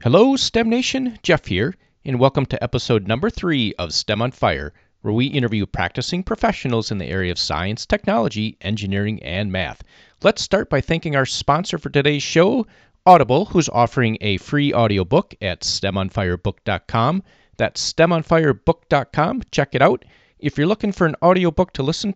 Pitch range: 105-155 Hz